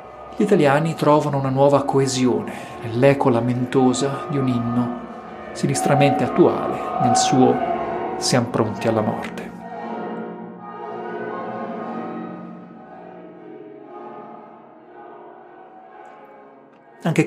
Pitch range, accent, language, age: 120-150 Hz, native, Italian, 40-59